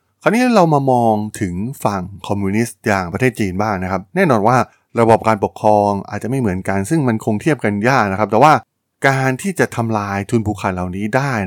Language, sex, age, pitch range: Thai, male, 20-39, 95-125 Hz